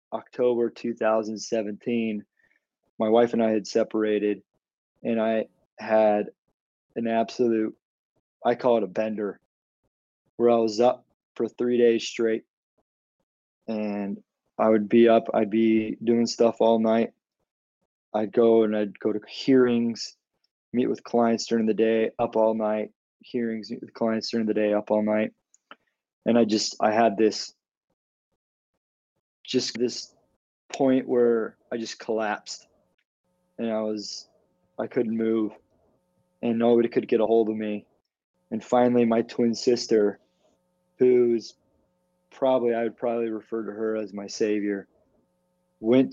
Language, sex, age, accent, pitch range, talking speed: English, male, 20-39, American, 105-120 Hz, 140 wpm